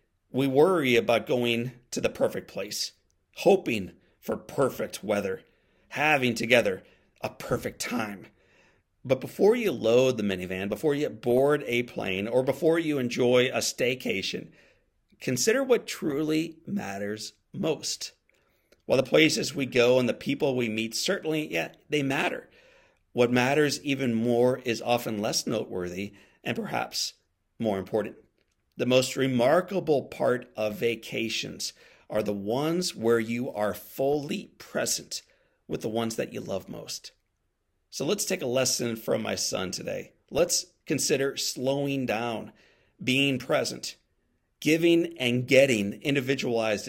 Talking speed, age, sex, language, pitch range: 135 wpm, 40-59, male, English, 105-140 Hz